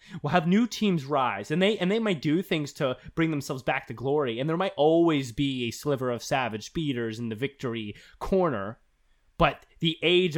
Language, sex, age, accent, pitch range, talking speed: English, male, 20-39, American, 160-250 Hz, 200 wpm